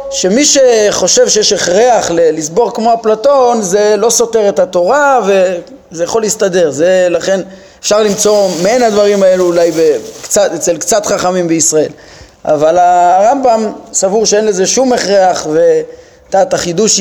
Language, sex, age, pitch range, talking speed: Hebrew, male, 30-49, 175-220 Hz, 135 wpm